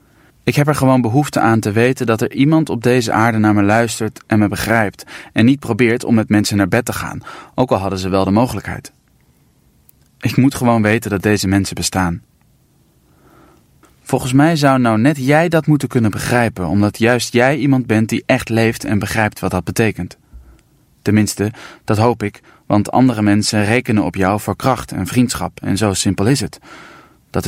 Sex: male